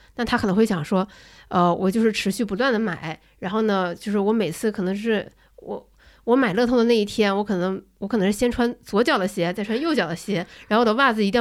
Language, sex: Chinese, female